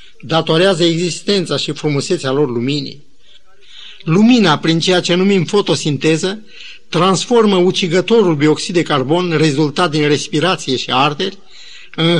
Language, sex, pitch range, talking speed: Romanian, male, 145-195 Hz, 115 wpm